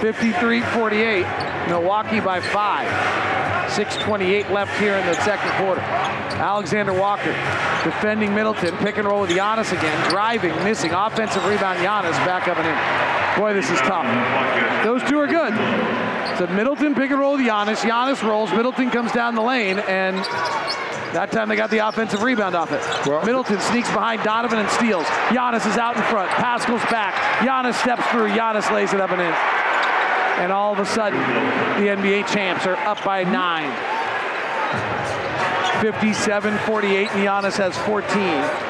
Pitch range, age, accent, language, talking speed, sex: 190-225 Hz, 40-59, American, English, 155 wpm, male